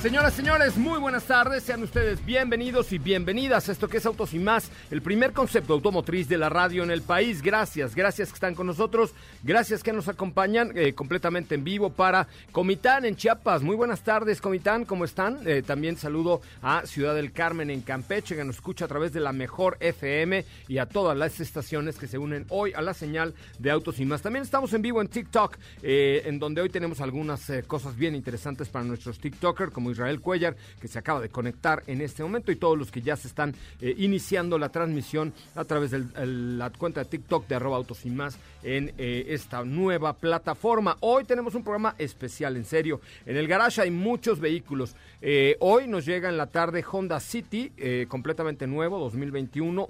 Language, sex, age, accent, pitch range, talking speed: Spanish, male, 40-59, Mexican, 140-200 Hz, 205 wpm